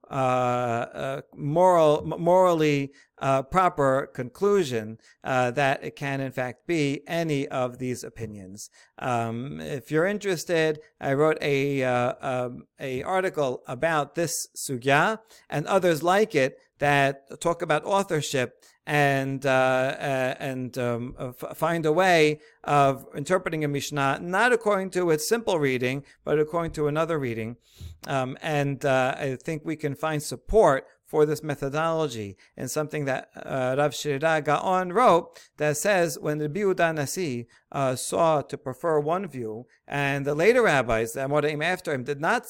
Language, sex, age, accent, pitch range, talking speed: English, male, 50-69, American, 130-170 Hz, 145 wpm